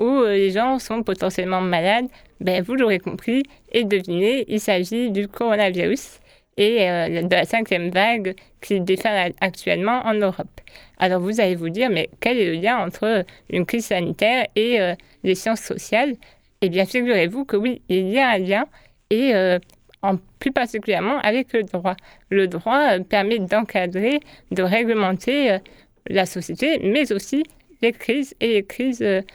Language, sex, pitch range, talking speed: French, female, 185-230 Hz, 165 wpm